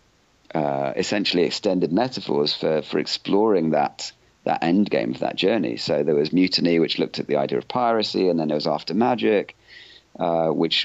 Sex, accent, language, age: male, British, English, 40-59